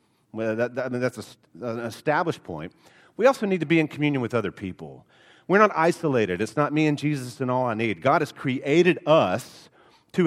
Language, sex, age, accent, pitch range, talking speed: English, male, 40-59, American, 140-190 Hz, 195 wpm